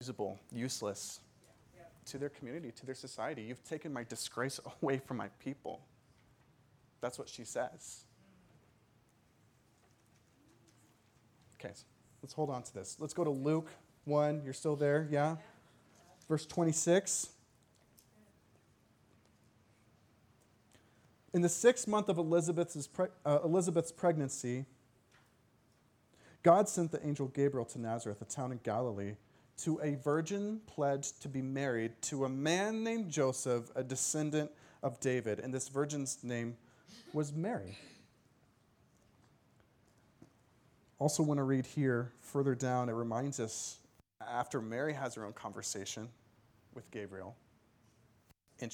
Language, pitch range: English, 115-145 Hz